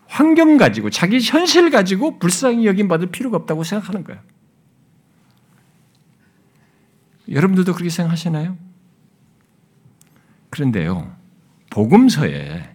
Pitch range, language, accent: 125-190 Hz, Korean, native